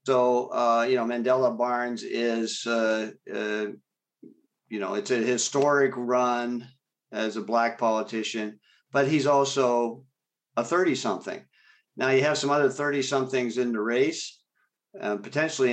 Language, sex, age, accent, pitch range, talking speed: English, male, 50-69, American, 110-130 Hz, 135 wpm